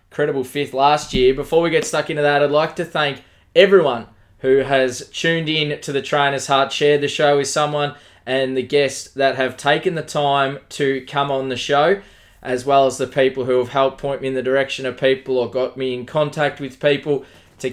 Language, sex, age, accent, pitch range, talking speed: English, male, 20-39, Australian, 130-150 Hz, 215 wpm